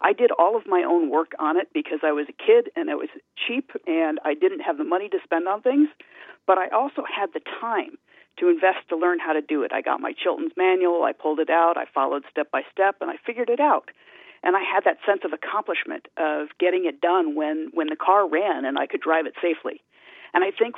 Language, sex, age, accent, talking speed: English, female, 50-69, American, 250 wpm